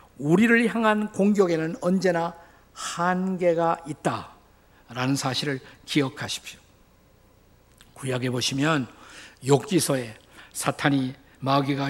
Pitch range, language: 130-180 Hz, Korean